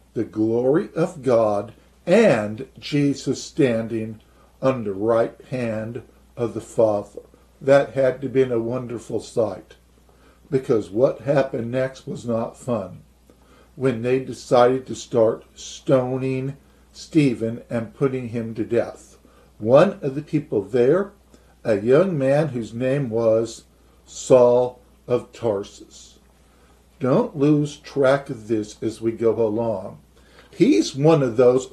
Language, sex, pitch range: English, male, 115-140 Hz